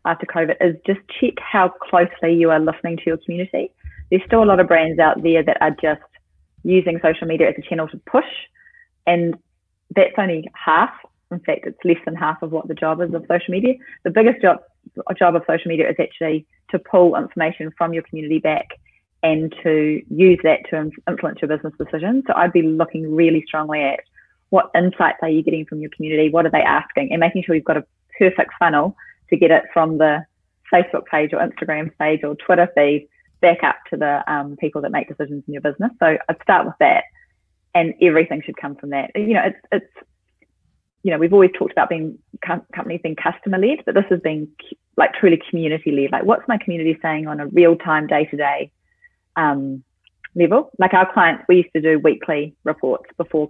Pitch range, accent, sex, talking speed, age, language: 155-180 Hz, Australian, female, 210 wpm, 20-39, English